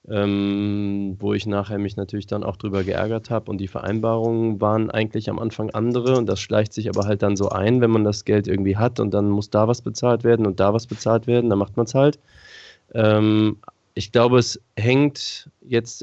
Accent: German